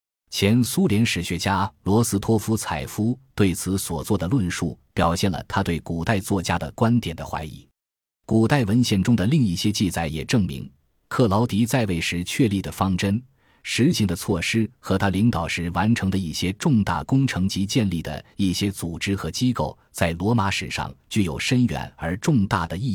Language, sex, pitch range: Chinese, male, 85-115 Hz